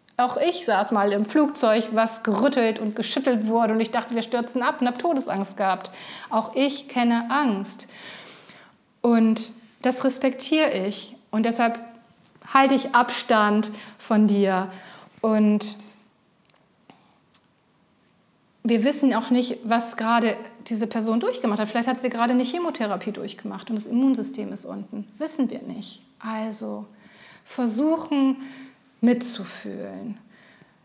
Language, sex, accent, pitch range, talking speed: German, female, German, 215-255 Hz, 125 wpm